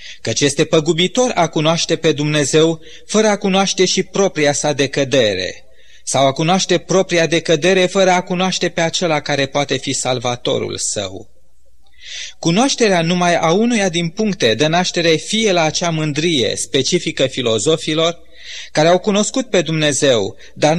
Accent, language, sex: native, Romanian, male